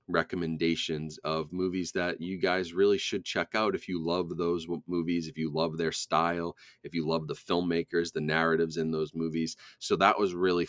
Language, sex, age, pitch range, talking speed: English, male, 30-49, 80-95 Hz, 190 wpm